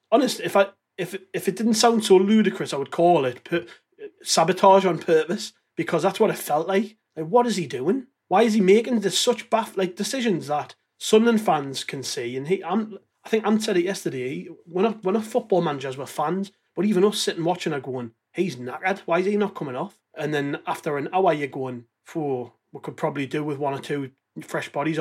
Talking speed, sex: 225 wpm, male